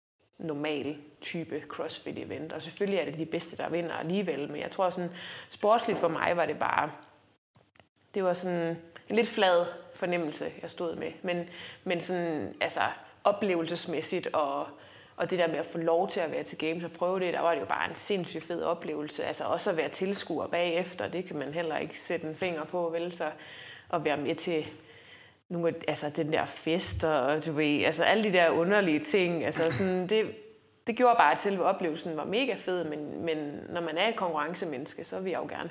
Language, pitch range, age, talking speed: Danish, 160-195 Hz, 20-39, 205 wpm